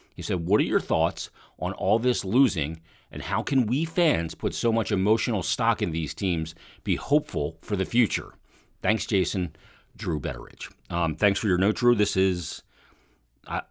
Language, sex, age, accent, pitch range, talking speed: English, male, 40-59, American, 85-115 Hz, 180 wpm